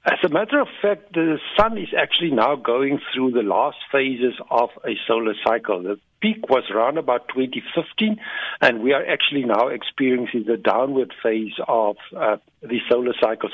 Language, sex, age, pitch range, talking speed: English, male, 60-79, 120-180 Hz, 175 wpm